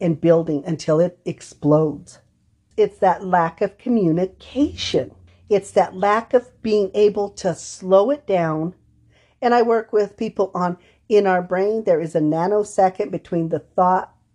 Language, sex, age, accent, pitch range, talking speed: English, female, 50-69, American, 165-200 Hz, 150 wpm